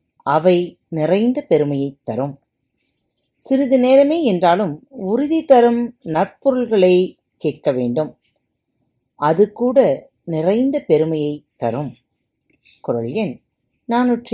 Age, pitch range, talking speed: 40-59, 155-245 Hz, 80 wpm